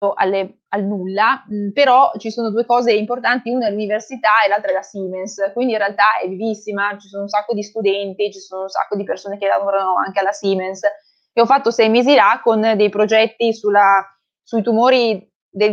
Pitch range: 195-220 Hz